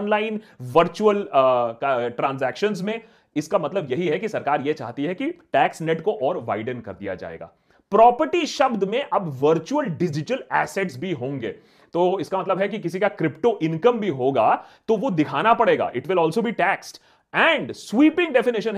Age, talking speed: 30-49, 180 wpm